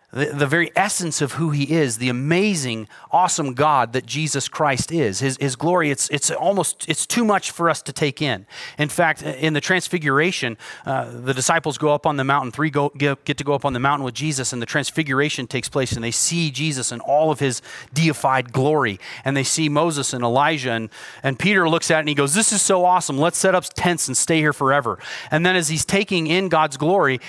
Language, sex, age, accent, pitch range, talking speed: English, male, 30-49, American, 130-170 Hz, 230 wpm